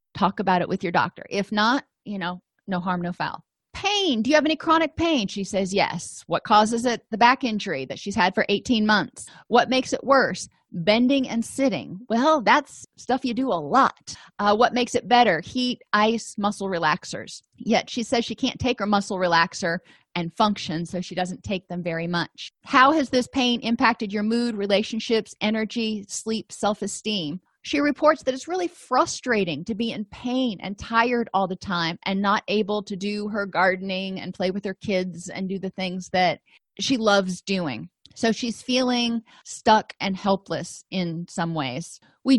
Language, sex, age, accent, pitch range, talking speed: English, female, 30-49, American, 190-240 Hz, 190 wpm